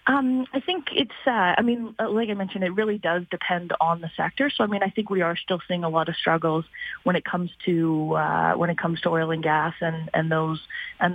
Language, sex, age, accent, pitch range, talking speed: English, female, 30-49, American, 165-190 Hz, 250 wpm